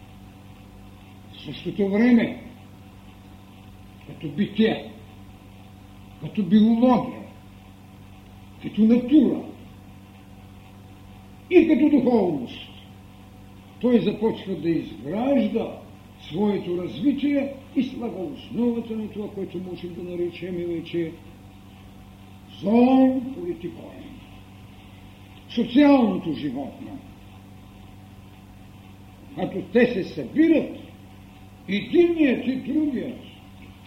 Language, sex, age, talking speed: Bulgarian, male, 60-79, 70 wpm